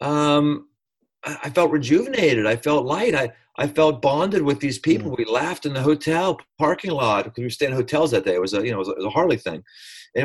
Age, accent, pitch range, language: 40-59, American, 110-150 Hz, English